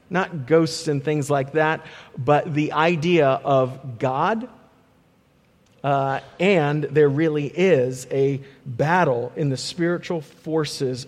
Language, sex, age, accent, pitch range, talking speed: English, male, 40-59, American, 135-170 Hz, 120 wpm